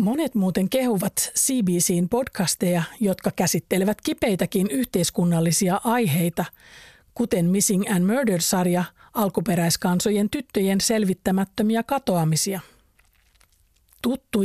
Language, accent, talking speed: Finnish, native, 80 wpm